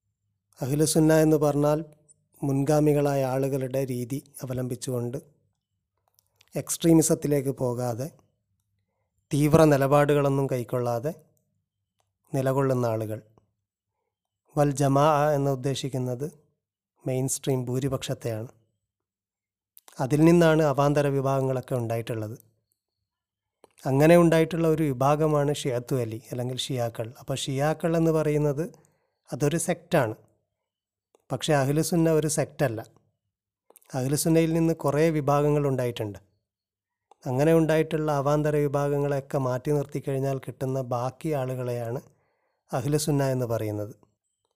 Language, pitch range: Malayalam, 120-150 Hz